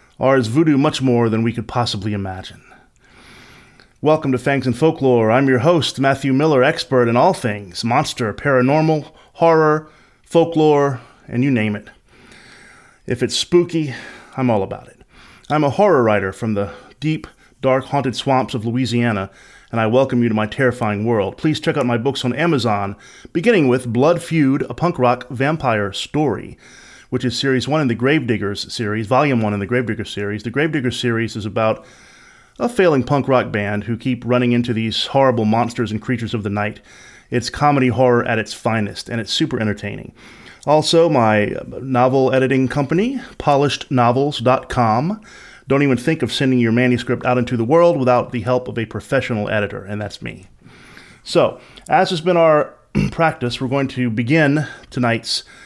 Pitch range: 115-145 Hz